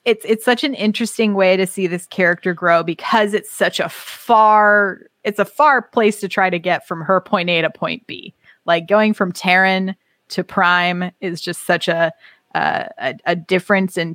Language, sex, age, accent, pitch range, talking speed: English, female, 20-39, American, 175-215 Hz, 195 wpm